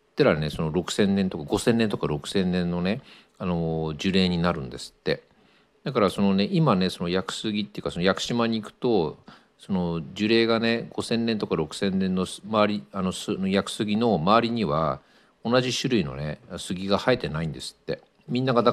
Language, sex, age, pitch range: Japanese, male, 50-69, 80-115 Hz